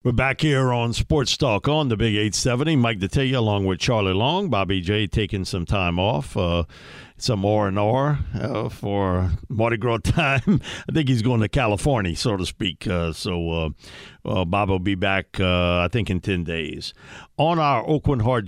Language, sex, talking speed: English, male, 180 wpm